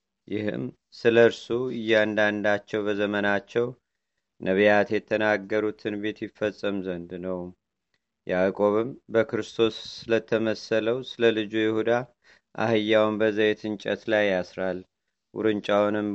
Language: Amharic